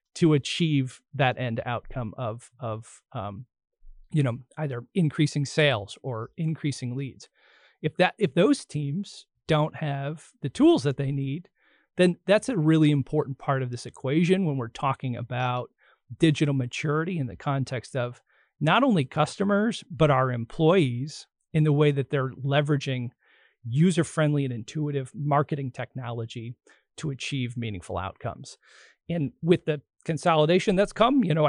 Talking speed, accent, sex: 145 wpm, American, male